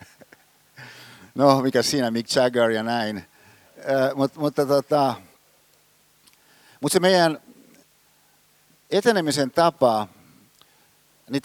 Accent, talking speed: native, 90 wpm